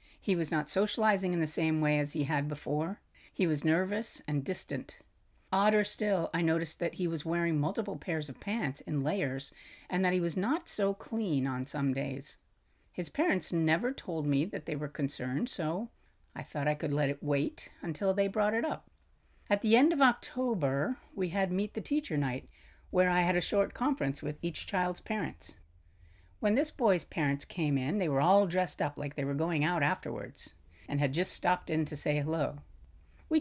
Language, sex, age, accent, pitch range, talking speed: English, female, 50-69, American, 145-195 Hz, 200 wpm